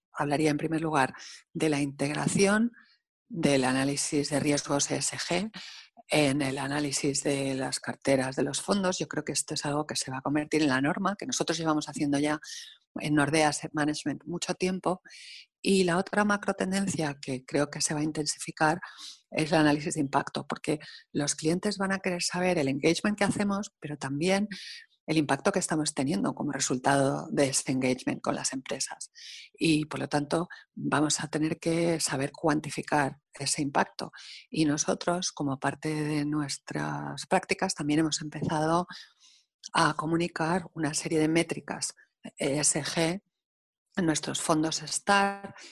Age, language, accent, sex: 40-59, English, Spanish, female